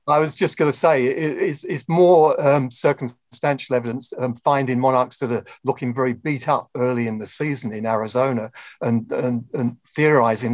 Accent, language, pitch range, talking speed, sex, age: British, English, 120-145 Hz, 175 wpm, male, 50-69